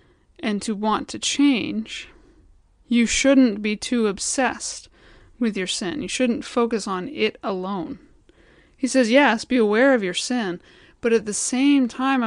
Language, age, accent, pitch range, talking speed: English, 20-39, American, 205-250 Hz, 155 wpm